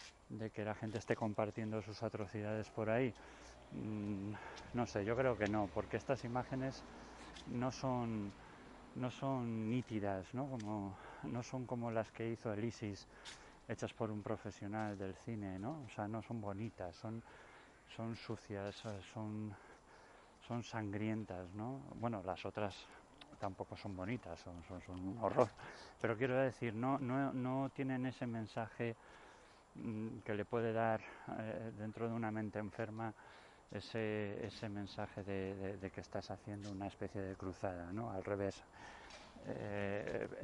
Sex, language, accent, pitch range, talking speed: male, Spanish, Spanish, 100-115 Hz, 150 wpm